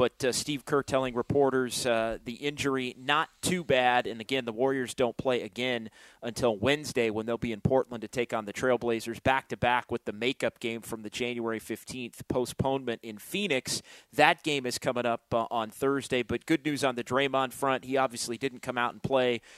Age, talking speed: 30-49, 200 wpm